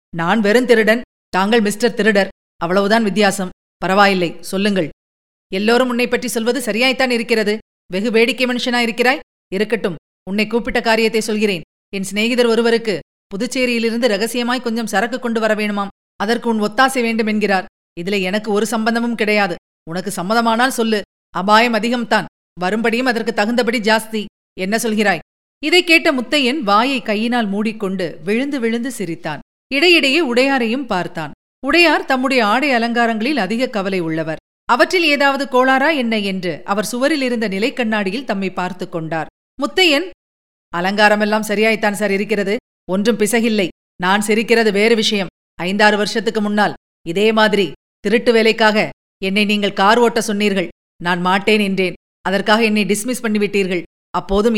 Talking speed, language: 125 wpm, Tamil